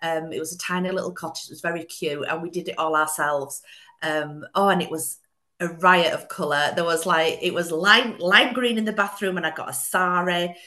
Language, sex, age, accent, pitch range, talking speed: English, female, 40-59, British, 155-195 Hz, 235 wpm